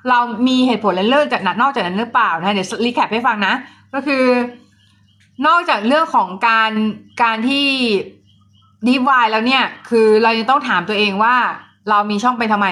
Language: Thai